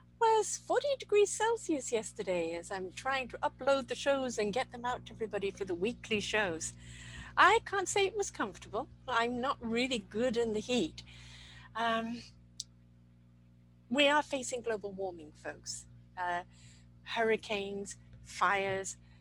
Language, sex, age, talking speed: English, female, 50-69, 140 wpm